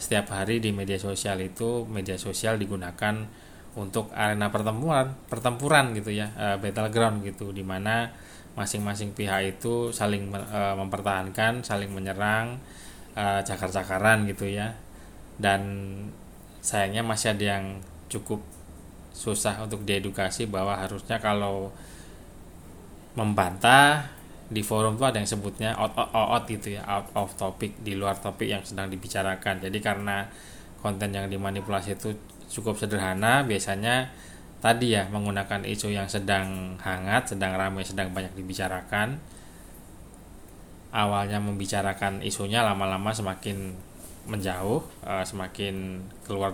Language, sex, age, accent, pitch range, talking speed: Indonesian, male, 20-39, native, 95-105 Hz, 115 wpm